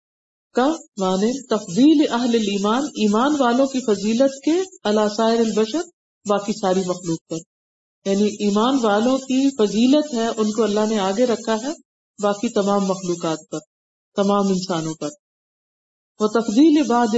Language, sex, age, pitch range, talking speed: Urdu, female, 50-69, 195-245 Hz, 125 wpm